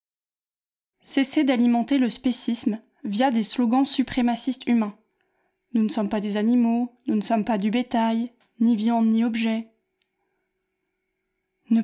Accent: French